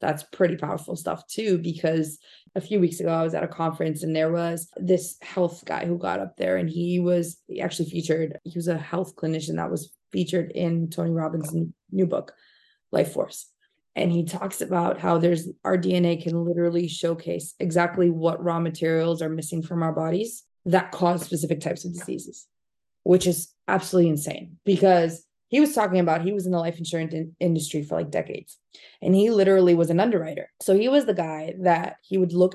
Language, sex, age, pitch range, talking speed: English, female, 20-39, 165-185 Hz, 195 wpm